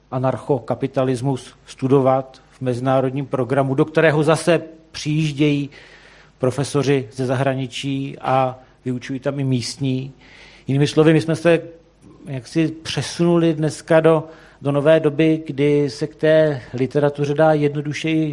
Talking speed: 120 wpm